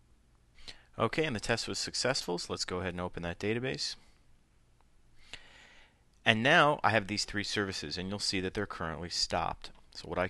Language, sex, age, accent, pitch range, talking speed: English, male, 30-49, American, 85-115 Hz, 180 wpm